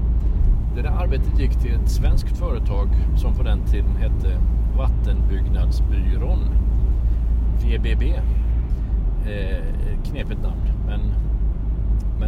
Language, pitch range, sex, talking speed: Swedish, 65-95 Hz, male, 95 wpm